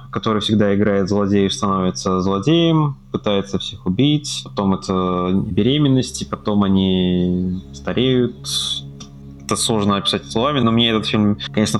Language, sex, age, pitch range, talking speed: Russian, male, 20-39, 90-115 Hz, 120 wpm